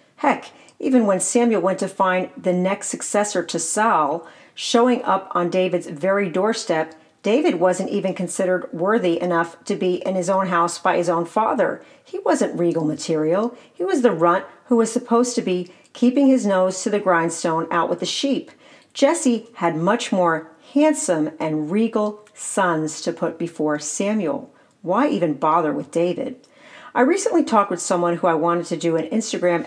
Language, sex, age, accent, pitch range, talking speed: English, female, 50-69, American, 175-235 Hz, 175 wpm